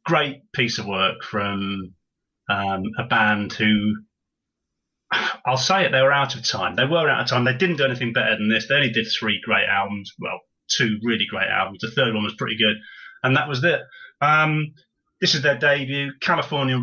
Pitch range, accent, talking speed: 110-140 Hz, British, 200 wpm